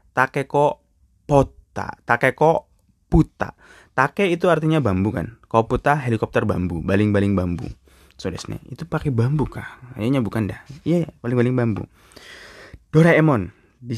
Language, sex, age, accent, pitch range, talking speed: Indonesian, male, 20-39, native, 100-135 Hz, 125 wpm